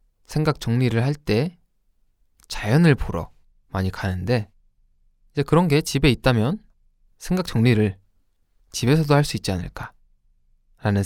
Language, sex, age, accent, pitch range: Korean, male, 20-39, native, 95-145 Hz